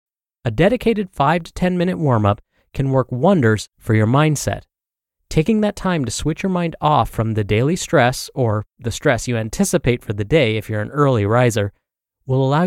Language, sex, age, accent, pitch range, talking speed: English, male, 30-49, American, 110-165 Hz, 190 wpm